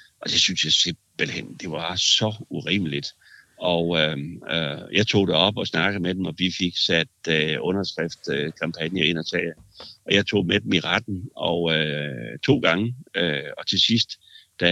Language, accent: Danish, native